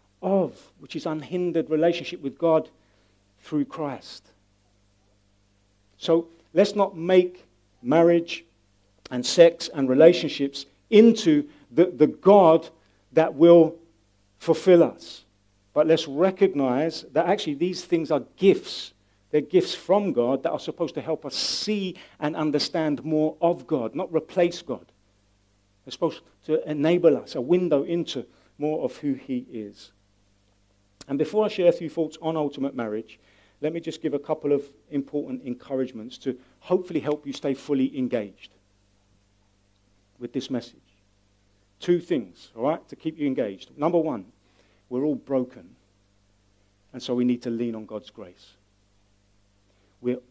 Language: English